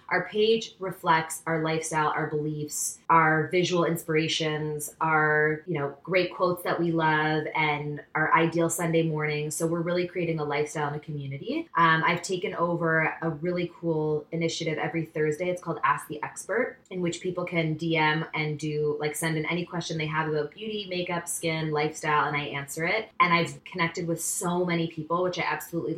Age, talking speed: 20-39, 180 wpm